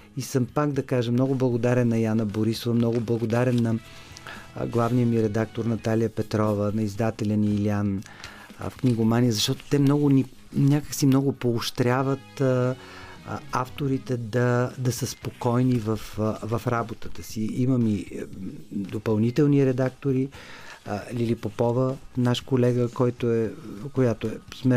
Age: 40-59